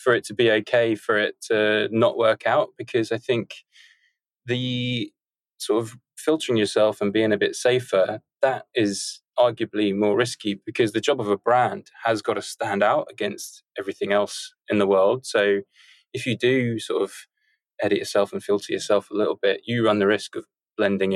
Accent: British